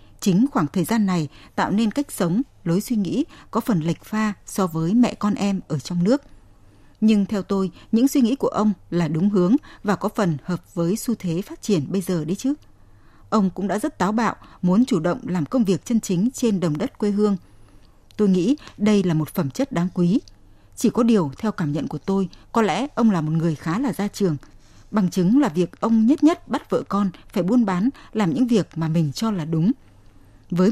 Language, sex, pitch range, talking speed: Vietnamese, female, 165-225 Hz, 225 wpm